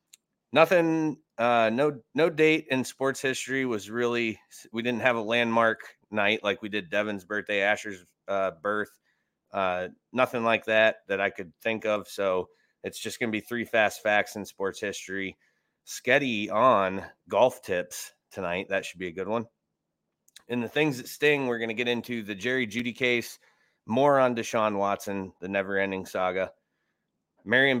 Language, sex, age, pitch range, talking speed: English, male, 30-49, 100-120 Hz, 170 wpm